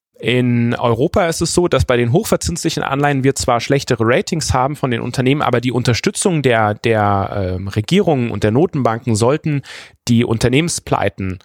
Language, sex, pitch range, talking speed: German, male, 110-130 Hz, 160 wpm